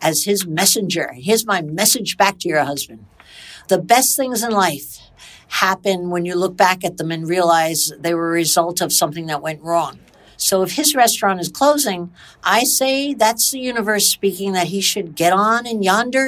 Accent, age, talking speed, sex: American, 60-79, 190 wpm, female